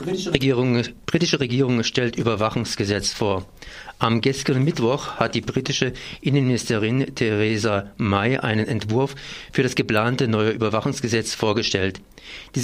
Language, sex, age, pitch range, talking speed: German, male, 50-69, 115-135 Hz, 115 wpm